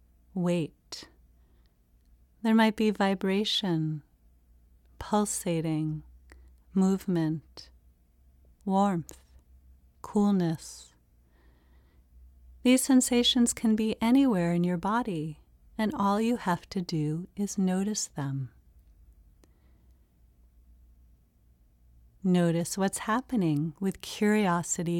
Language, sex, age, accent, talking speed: English, female, 40-59, American, 70 wpm